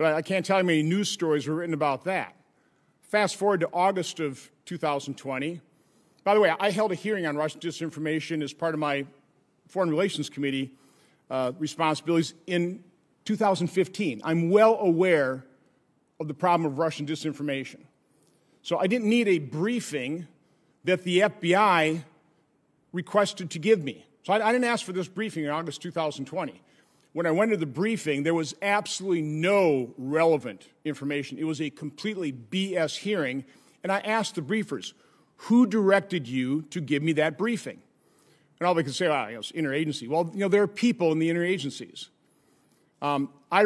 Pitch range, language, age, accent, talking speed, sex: 150-195 Hz, English, 50-69, American, 170 wpm, male